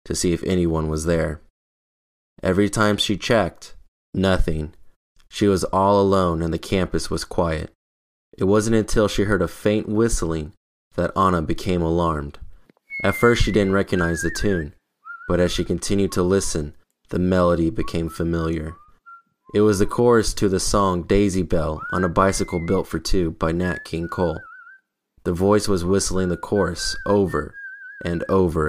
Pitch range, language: 85-100 Hz, English